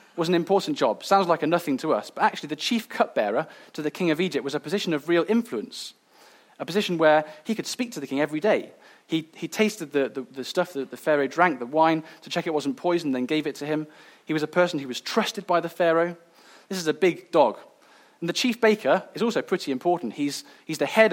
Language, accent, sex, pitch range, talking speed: English, British, male, 145-185 Hz, 245 wpm